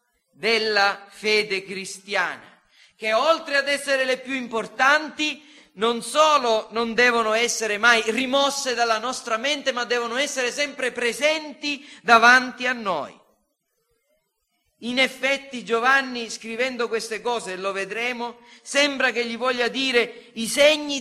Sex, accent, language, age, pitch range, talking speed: male, native, Italian, 40-59, 225-275 Hz, 125 wpm